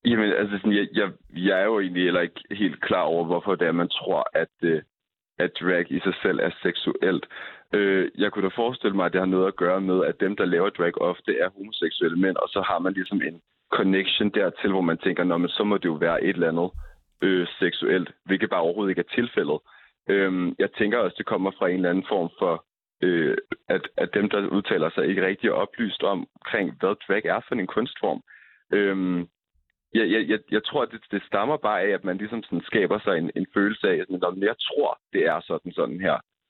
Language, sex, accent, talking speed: Danish, male, native, 230 wpm